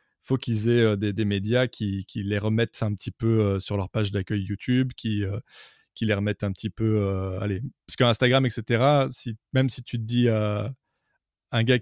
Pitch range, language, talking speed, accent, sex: 105-125 Hz, French, 220 wpm, French, male